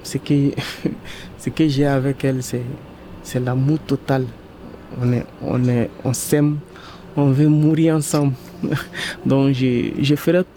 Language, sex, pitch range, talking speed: French, male, 130-150 Hz, 140 wpm